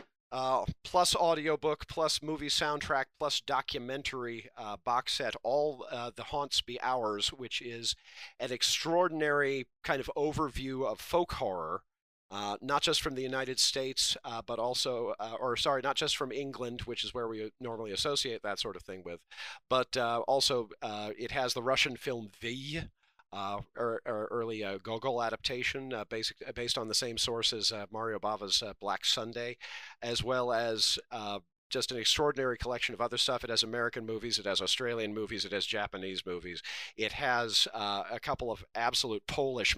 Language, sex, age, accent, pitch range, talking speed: English, male, 40-59, American, 110-135 Hz, 180 wpm